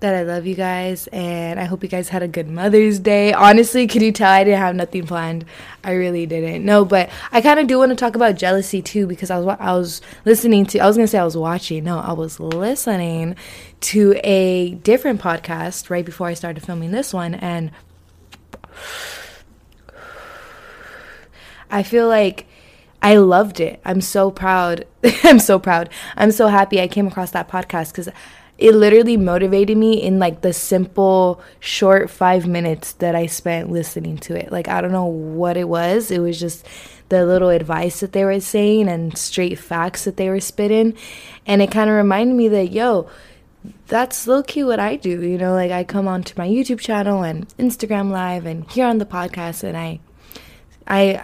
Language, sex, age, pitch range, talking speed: English, female, 20-39, 175-210 Hz, 190 wpm